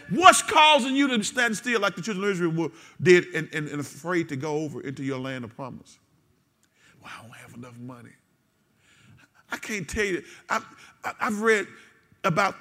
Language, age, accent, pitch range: English, 50-69, American, 160-225 Hz